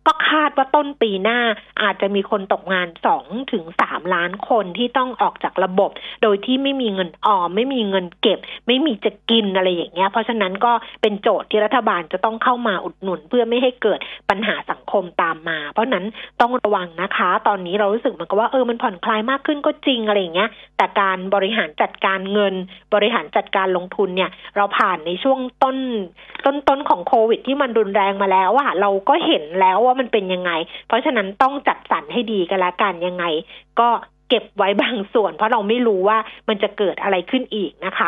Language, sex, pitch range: Thai, female, 195-245 Hz